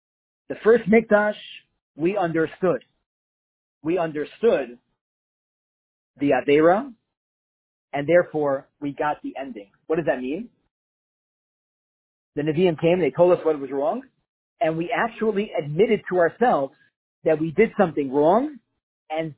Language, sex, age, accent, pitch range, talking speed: English, male, 40-59, American, 150-225 Hz, 125 wpm